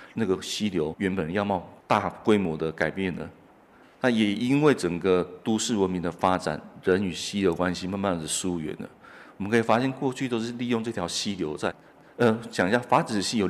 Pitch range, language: 90-115 Hz, Chinese